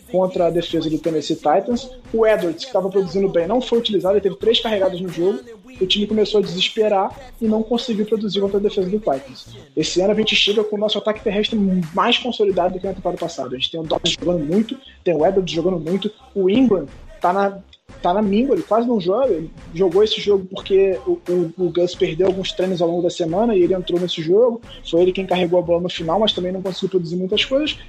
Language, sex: Portuguese, male